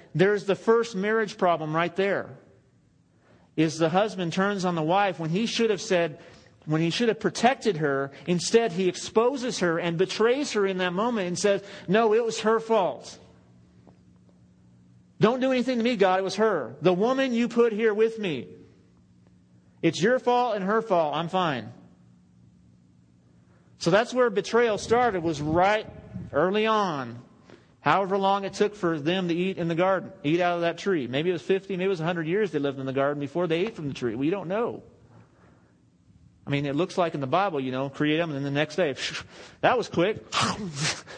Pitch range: 135-195 Hz